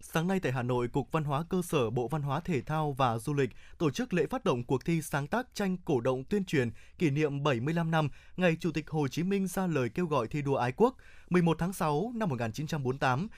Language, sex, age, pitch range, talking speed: Vietnamese, male, 20-39, 135-185 Hz, 245 wpm